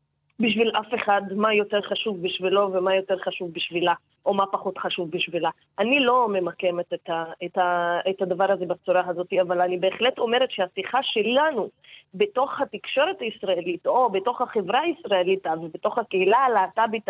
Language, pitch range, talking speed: Hebrew, 185-230 Hz, 155 wpm